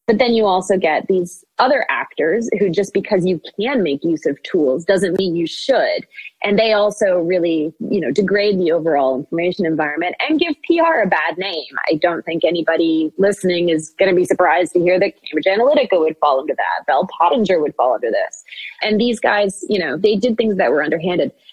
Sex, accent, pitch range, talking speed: female, American, 165-210 Hz, 205 wpm